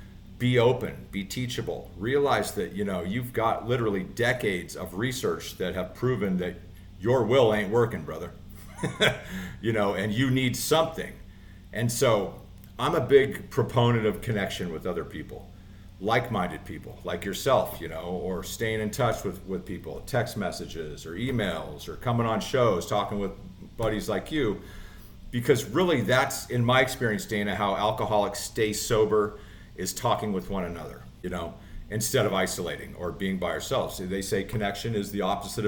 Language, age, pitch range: English, 50-69, 95-120 Hz